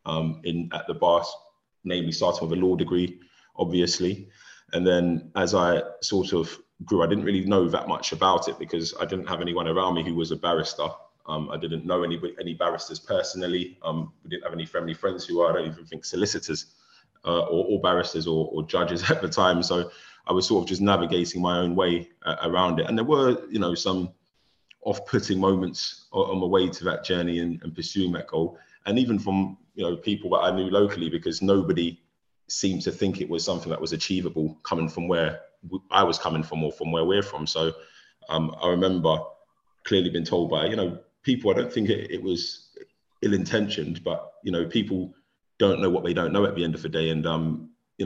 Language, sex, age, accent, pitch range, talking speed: English, male, 20-39, British, 80-95 Hz, 215 wpm